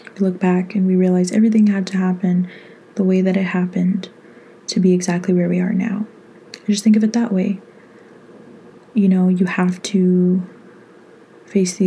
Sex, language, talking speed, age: female, English, 165 wpm, 20-39